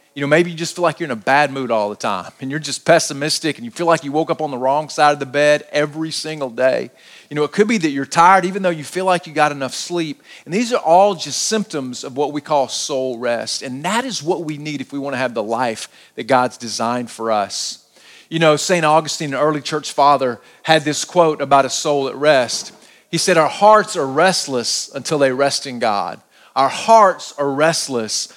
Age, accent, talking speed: 40-59, American, 240 wpm